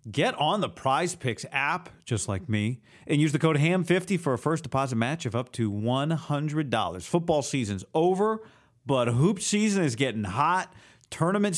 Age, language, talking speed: 40-59, English, 170 wpm